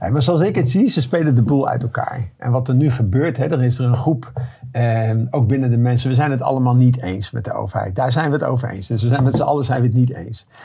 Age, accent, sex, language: 50-69, Dutch, male, Dutch